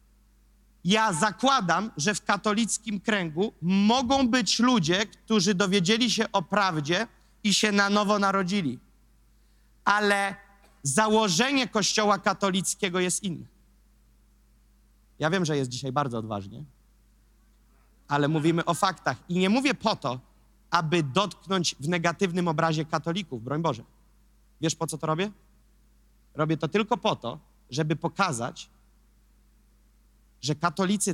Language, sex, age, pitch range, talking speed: Polish, male, 30-49, 155-200 Hz, 120 wpm